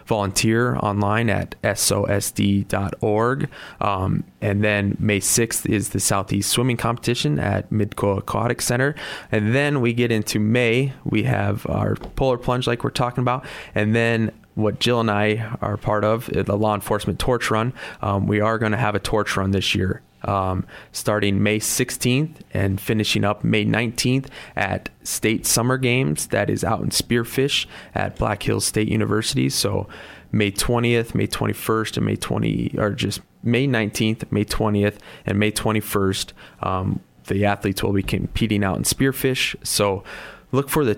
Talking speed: 160 wpm